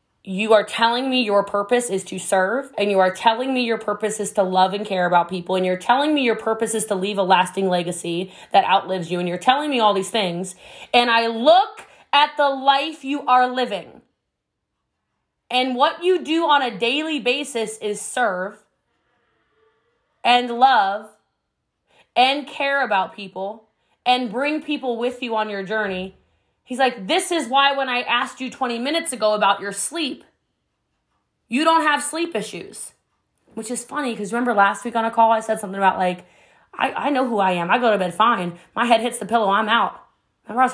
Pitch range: 200-260 Hz